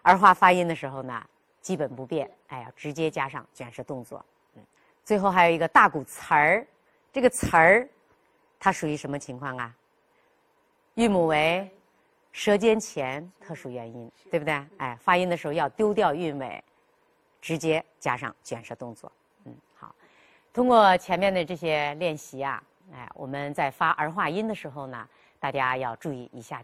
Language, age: Chinese, 30-49